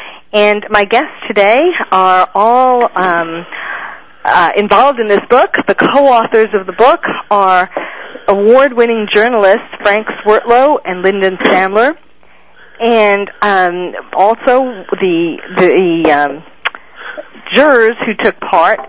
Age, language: 40-59, English